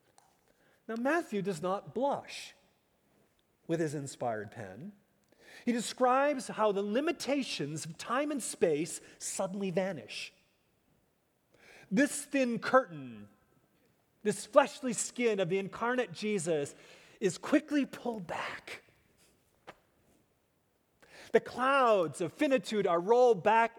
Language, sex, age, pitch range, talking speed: English, male, 40-59, 170-220 Hz, 105 wpm